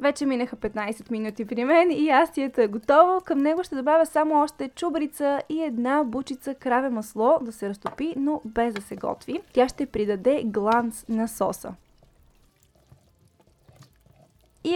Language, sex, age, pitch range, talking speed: Bulgarian, female, 10-29, 225-285 Hz, 150 wpm